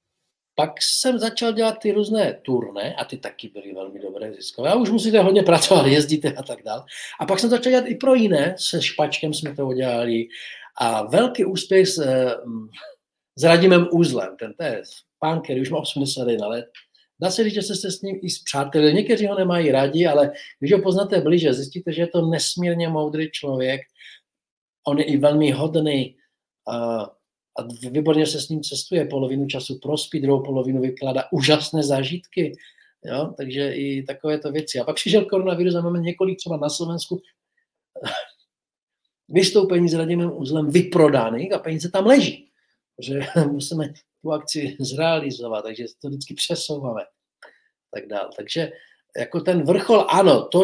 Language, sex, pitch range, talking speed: Czech, male, 135-185 Hz, 160 wpm